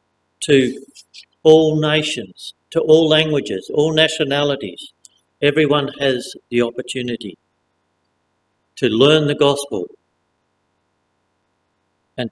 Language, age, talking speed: English, 60-79, 85 wpm